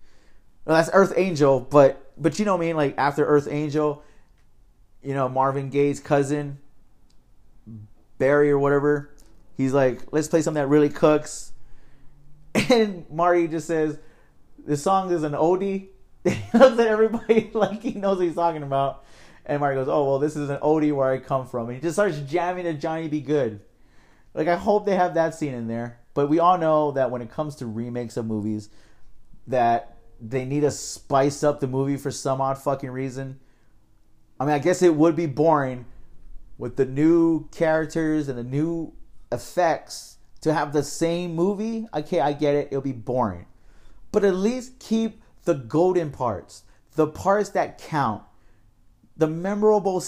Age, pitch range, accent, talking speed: 30-49, 130-175 Hz, American, 175 wpm